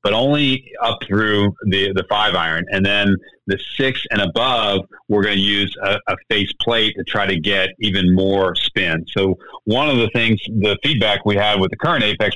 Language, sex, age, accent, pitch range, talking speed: English, male, 40-59, American, 100-115 Hz, 205 wpm